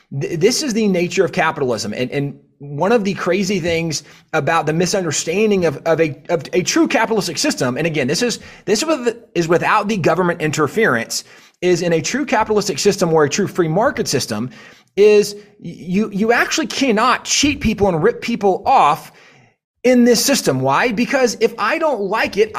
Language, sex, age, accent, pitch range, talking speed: English, male, 30-49, American, 170-235 Hz, 180 wpm